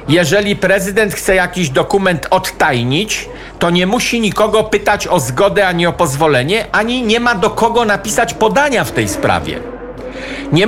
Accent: native